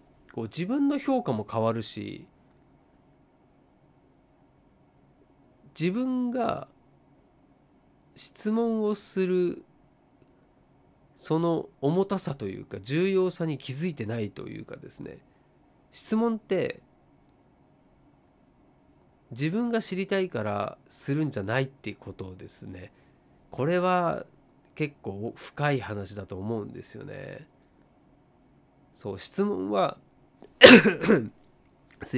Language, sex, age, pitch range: Japanese, male, 40-59, 120-195 Hz